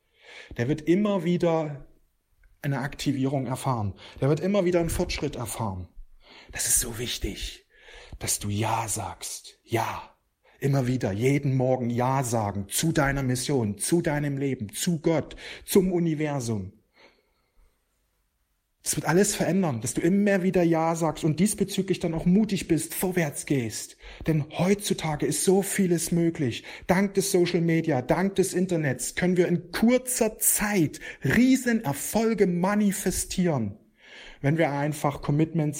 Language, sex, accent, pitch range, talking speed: German, male, German, 145-190 Hz, 135 wpm